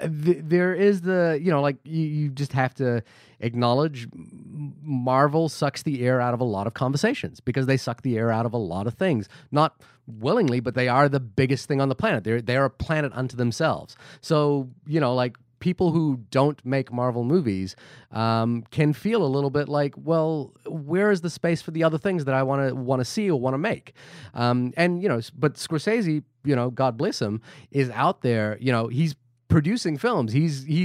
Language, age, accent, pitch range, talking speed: English, 30-49, American, 125-160 Hz, 210 wpm